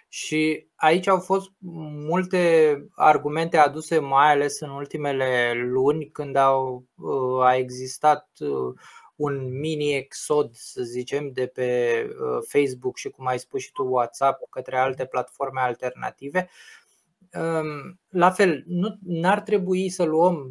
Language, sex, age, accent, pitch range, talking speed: Romanian, male, 20-39, native, 135-180 Hz, 125 wpm